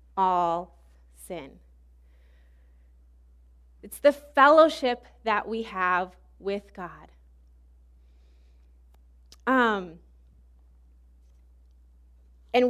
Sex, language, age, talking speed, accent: female, English, 20-39, 55 wpm, American